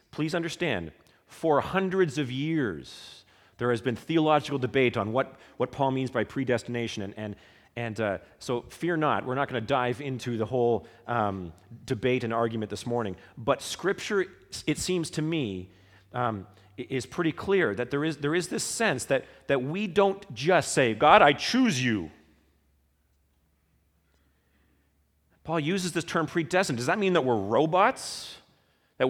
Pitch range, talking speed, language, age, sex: 115-160 Hz, 155 wpm, English, 40-59, male